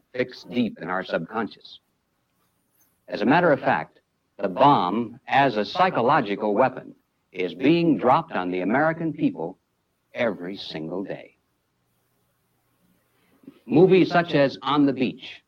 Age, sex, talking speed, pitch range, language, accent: 60-79, male, 125 wpm, 110-150 Hz, English, American